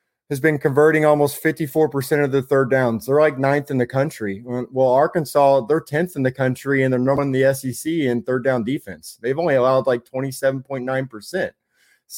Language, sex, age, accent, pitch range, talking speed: English, male, 20-39, American, 115-140 Hz, 175 wpm